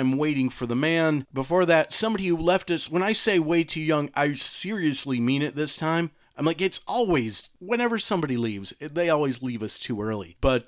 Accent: American